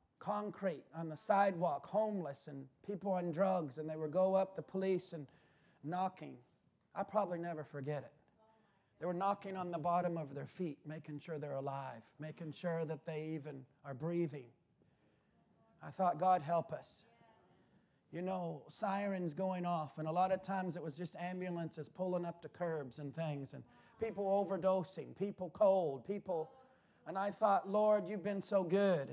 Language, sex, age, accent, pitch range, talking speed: English, male, 40-59, American, 170-210 Hz, 170 wpm